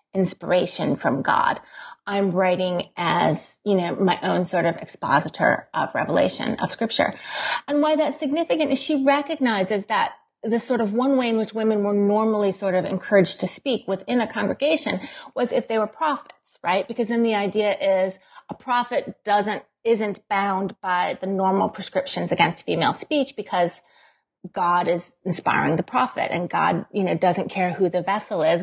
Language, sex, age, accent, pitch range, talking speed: English, female, 30-49, American, 195-270 Hz, 170 wpm